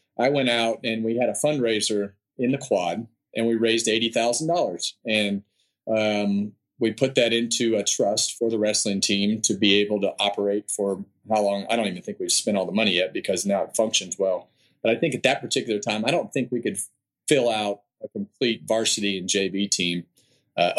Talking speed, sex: 205 wpm, male